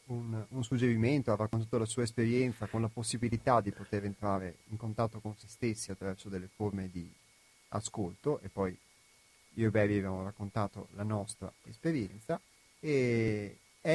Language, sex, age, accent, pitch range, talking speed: Italian, male, 30-49, native, 105-125 Hz, 150 wpm